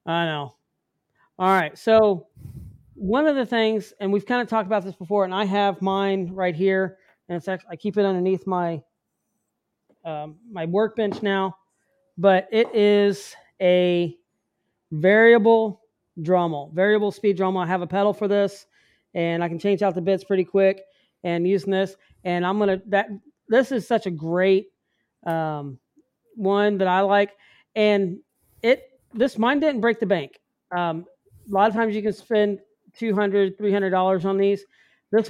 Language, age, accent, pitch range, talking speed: English, 40-59, American, 180-210 Hz, 165 wpm